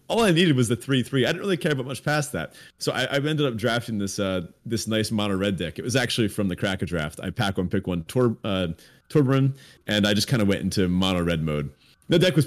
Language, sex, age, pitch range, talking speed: English, male, 30-49, 110-165 Hz, 260 wpm